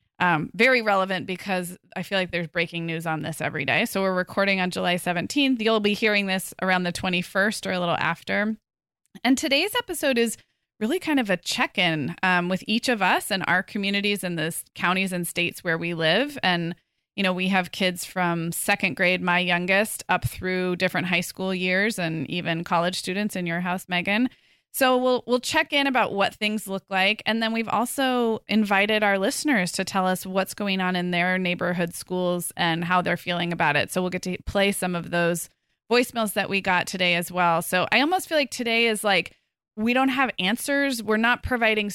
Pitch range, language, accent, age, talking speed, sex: 180-225 Hz, English, American, 20-39, 210 wpm, female